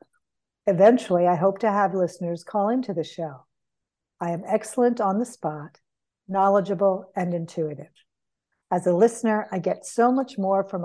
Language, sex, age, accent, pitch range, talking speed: English, female, 50-69, American, 170-215 Hz, 155 wpm